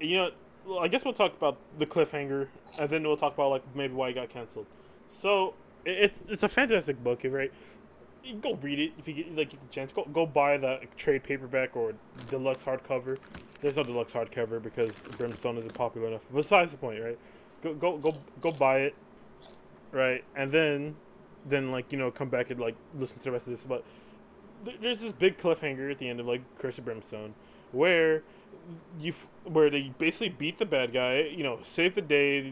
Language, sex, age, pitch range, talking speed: English, male, 20-39, 130-165 Hz, 205 wpm